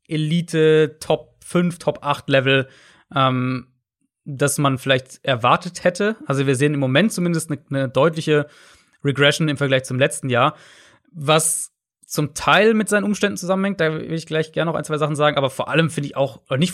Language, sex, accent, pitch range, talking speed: German, male, German, 140-165 Hz, 170 wpm